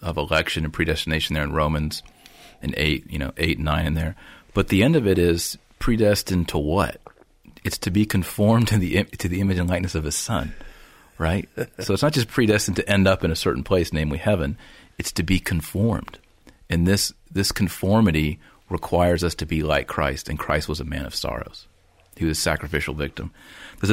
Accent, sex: American, male